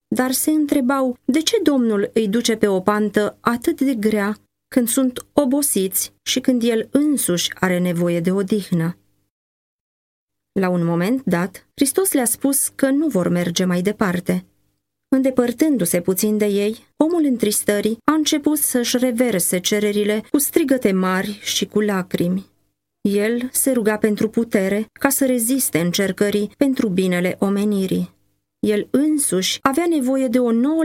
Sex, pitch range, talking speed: female, 180-250 Hz, 145 wpm